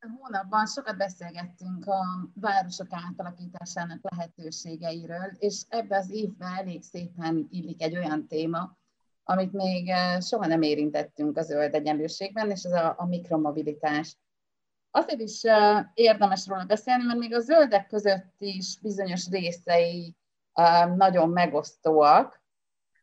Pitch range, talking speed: 165-200 Hz, 115 wpm